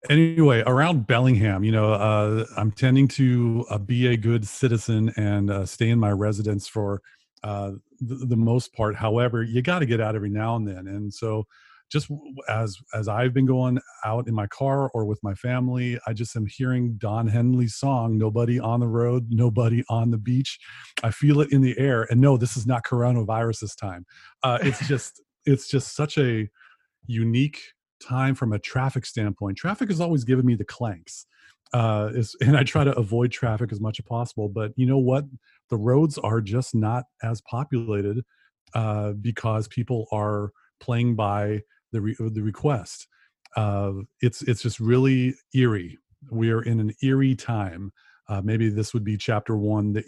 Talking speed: 185 wpm